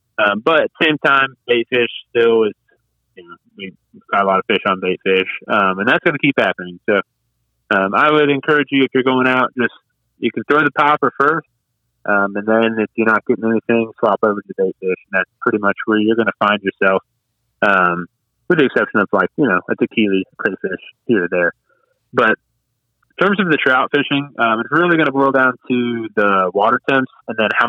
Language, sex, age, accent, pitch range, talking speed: English, male, 30-49, American, 110-140 Hz, 225 wpm